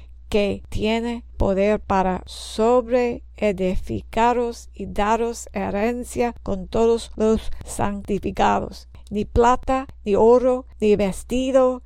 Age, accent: 50-69, American